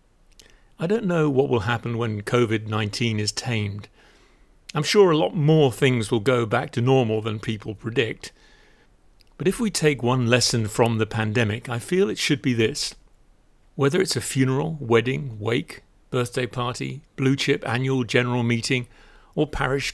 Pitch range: 110-135 Hz